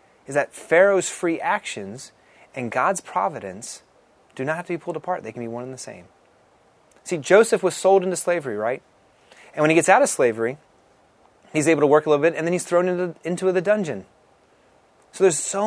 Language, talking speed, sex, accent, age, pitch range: English, 205 wpm, male, American, 30-49, 125-185 Hz